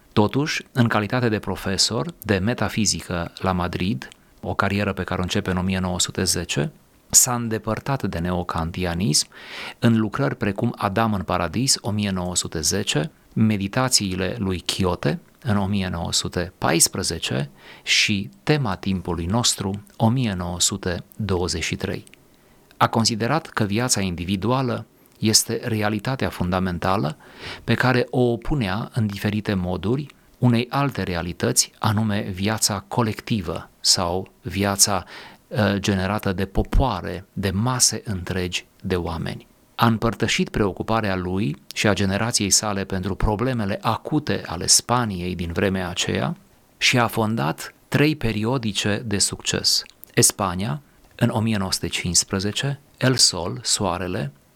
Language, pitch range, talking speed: Romanian, 95-115 Hz, 110 wpm